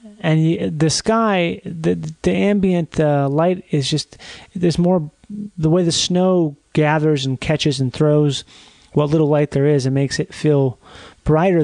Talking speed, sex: 160 wpm, male